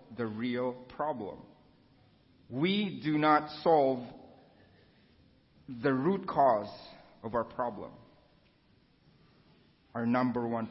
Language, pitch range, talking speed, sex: English, 120-155 Hz, 90 wpm, male